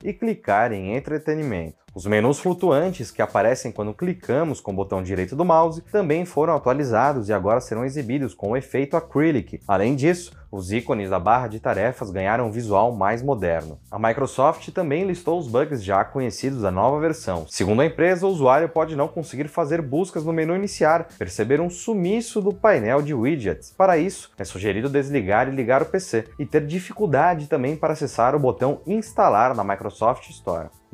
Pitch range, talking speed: 115-175 Hz, 180 wpm